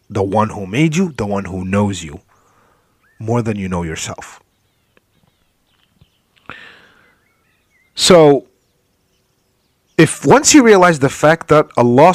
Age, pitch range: 30-49, 110-170 Hz